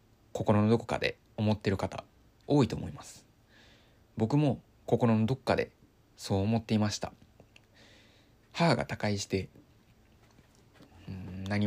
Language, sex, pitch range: Japanese, male, 100-115 Hz